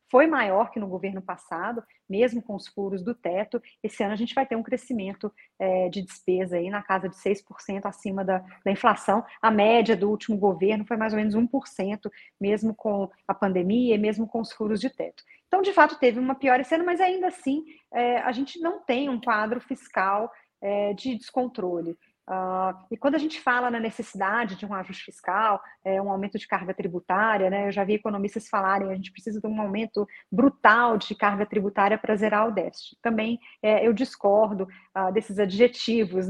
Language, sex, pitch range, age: Portuguese, female, 200-240 Hz, 40-59